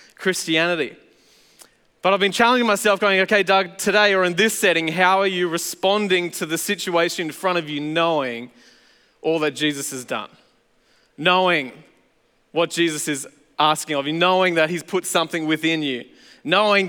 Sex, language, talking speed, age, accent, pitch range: male, English, 165 wpm, 20-39, Australian, 165-205 Hz